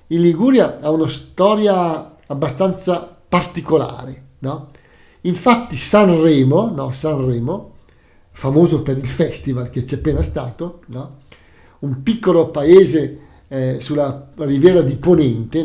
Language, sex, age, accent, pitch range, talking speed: Italian, male, 50-69, native, 130-180 Hz, 110 wpm